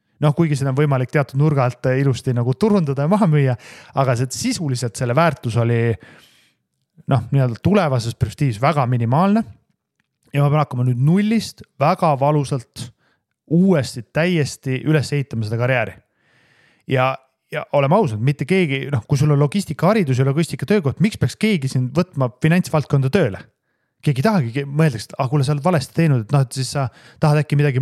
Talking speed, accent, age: 160 wpm, Finnish, 30-49